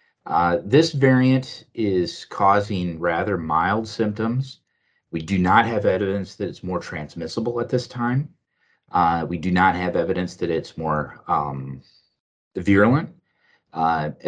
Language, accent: English, American